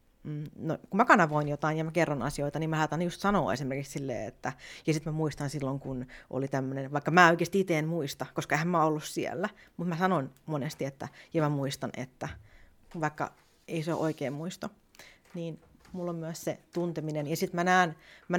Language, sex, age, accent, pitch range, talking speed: Finnish, female, 30-49, native, 145-175 Hz, 200 wpm